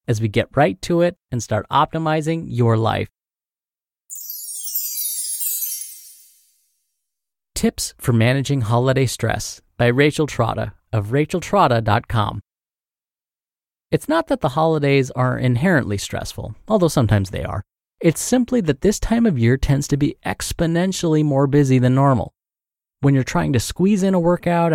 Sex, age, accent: male, 30-49, American